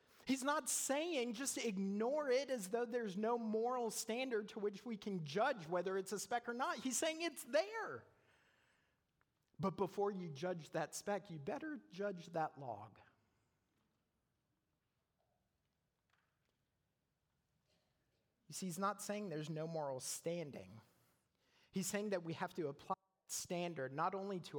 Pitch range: 145-205 Hz